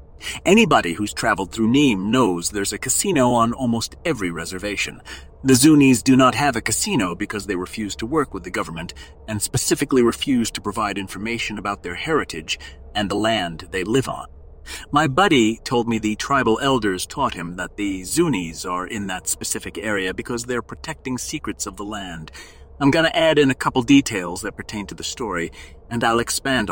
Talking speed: 185 wpm